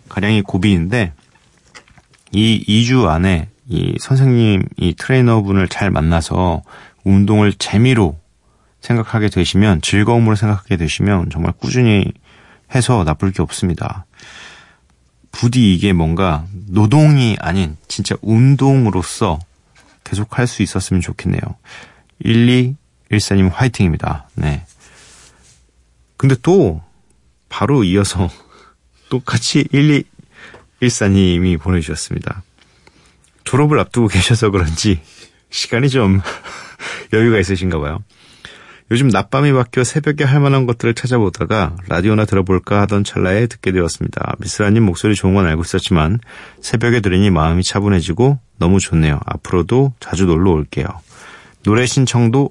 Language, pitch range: Korean, 90-120 Hz